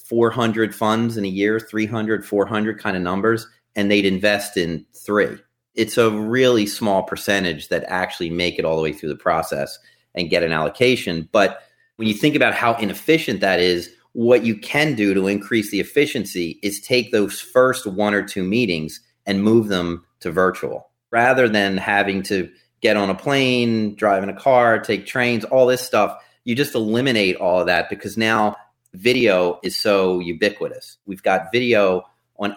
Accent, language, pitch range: American, English, 100-120 Hz